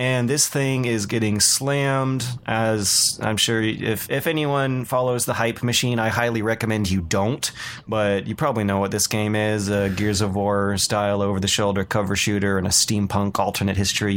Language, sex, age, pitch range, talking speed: English, male, 20-39, 100-125 Hz, 175 wpm